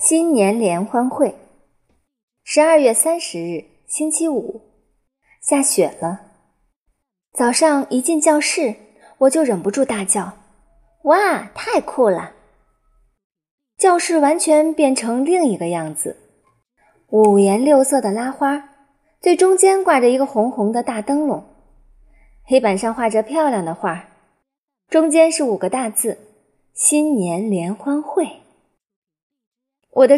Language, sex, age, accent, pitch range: Chinese, female, 20-39, native, 200-285 Hz